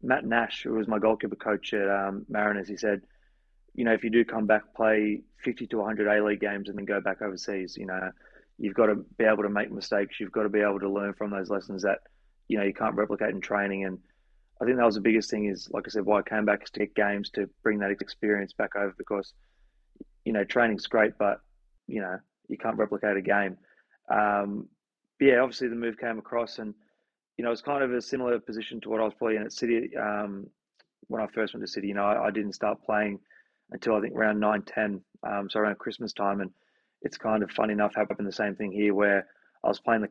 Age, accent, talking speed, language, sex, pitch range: 20-39, Australian, 240 wpm, English, male, 100-110 Hz